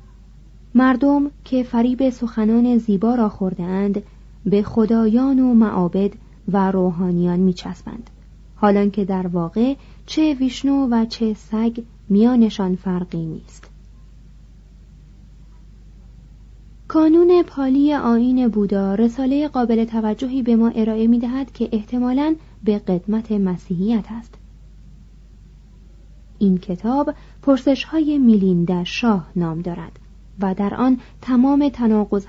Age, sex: 30-49, female